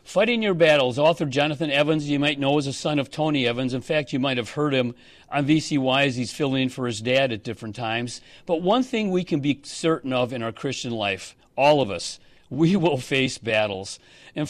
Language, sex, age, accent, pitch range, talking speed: English, male, 50-69, American, 130-180 Hz, 225 wpm